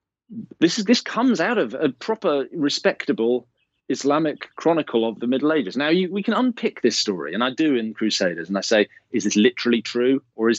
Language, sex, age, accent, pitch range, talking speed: English, male, 40-59, British, 100-145 Hz, 205 wpm